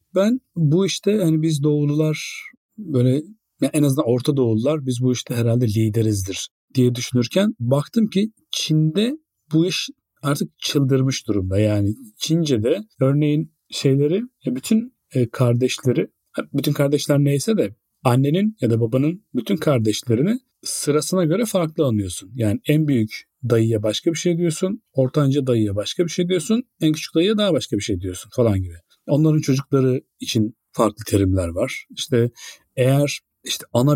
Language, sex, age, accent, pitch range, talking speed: Turkish, male, 40-59, native, 115-165 Hz, 145 wpm